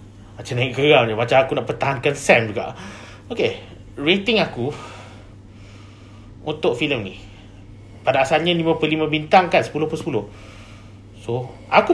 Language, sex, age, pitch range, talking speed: Malay, male, 30-49, 105-140 Hz, 140 wpm